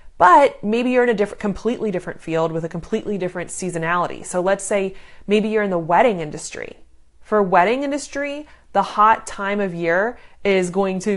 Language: English